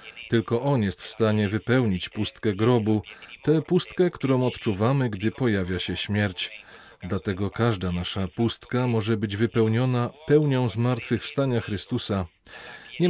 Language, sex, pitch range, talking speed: Polish, male, 100-125 Hz, 125 wpm